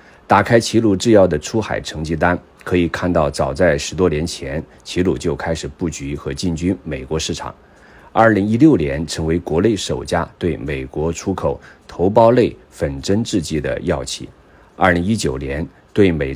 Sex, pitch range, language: male, 75-100 Hz, Chinese